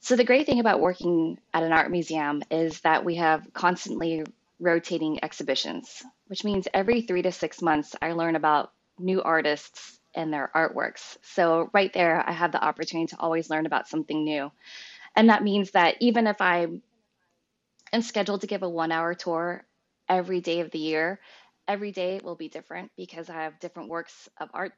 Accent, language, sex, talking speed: American, English, female, 185 wpm